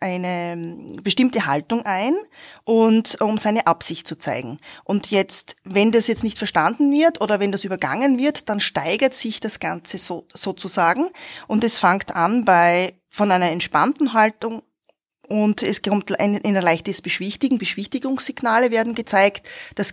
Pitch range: 190-240 Hz